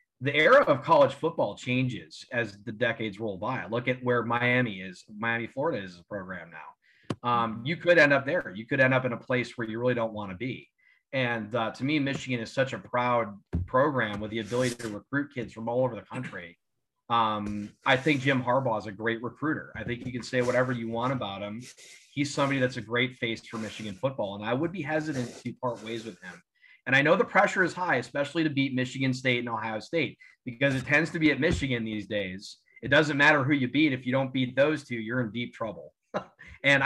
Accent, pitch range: American, 115-140 Hz